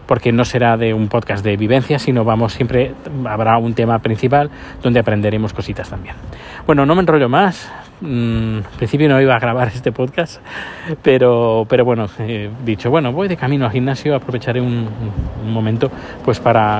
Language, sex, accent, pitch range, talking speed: Spanish, male, Spanish, 105-125 Hz, 175 wpm